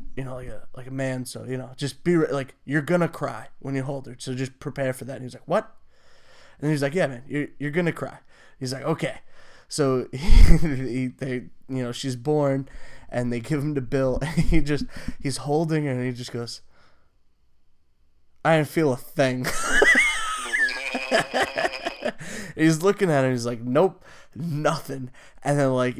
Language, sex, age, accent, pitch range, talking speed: English, male, 20-39, American, 125-160 Hz, 190 wpm